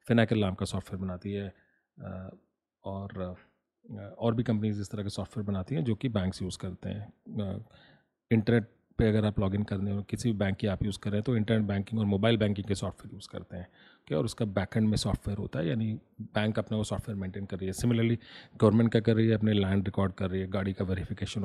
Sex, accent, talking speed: male, native, 220 wpm